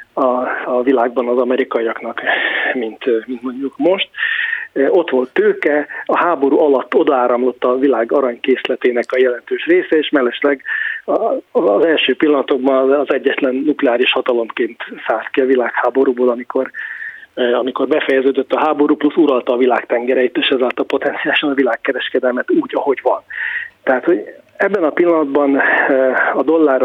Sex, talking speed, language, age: male, 135 wpm, Hungarian, 30-49